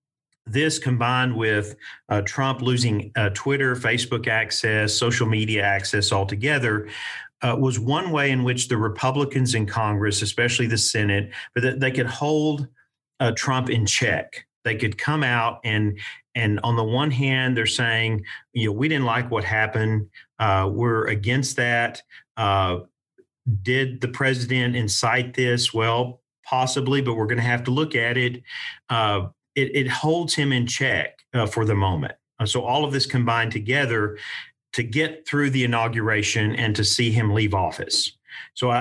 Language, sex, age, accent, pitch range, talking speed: English, male, 40-59, American, 110-130 Hz, 160 wpm